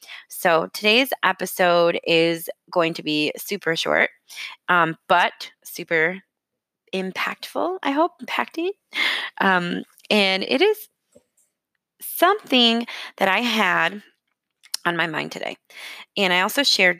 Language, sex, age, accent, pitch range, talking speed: English, female, 20-39, American, 170-215 Hz, 115 wpm